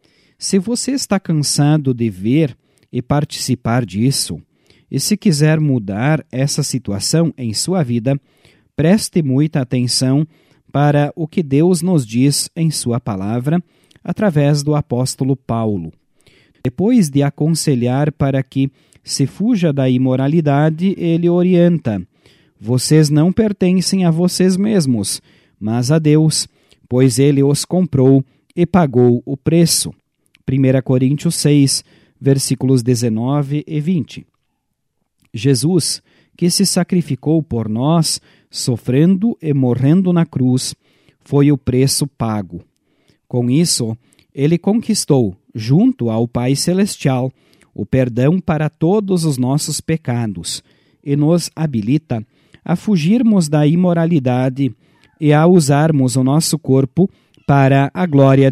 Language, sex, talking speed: Portuguese, male, 120 wpm